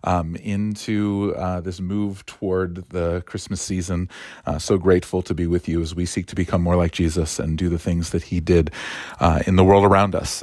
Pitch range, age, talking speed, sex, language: 90-105 Hz, 40-59, 215 wpm, male, English